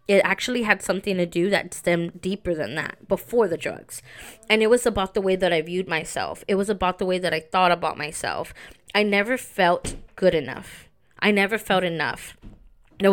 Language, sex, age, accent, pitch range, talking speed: English, female, 20-39, American, 180-210 Hz, 200 wpm